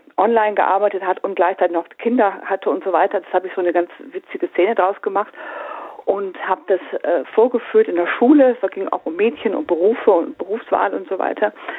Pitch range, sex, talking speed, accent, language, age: 170-285 Hz, female, 220 wpm, German, German, 40-59